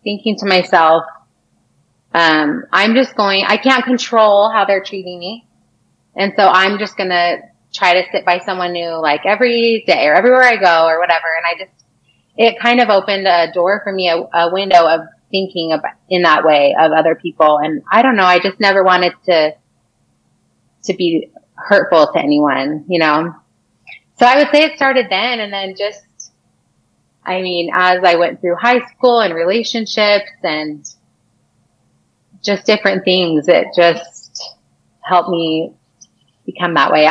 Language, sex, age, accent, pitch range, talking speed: English, female, 30-49, American, 165-195 Hz, 170 wpm